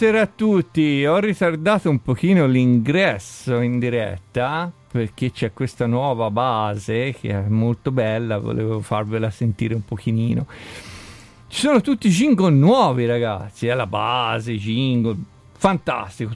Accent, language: native, Italian